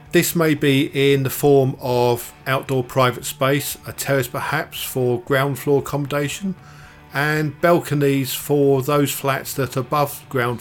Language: English